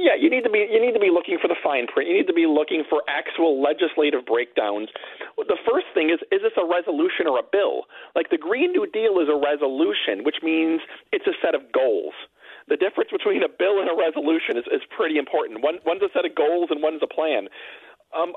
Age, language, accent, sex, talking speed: 40-59, English, American, male, 235 wpm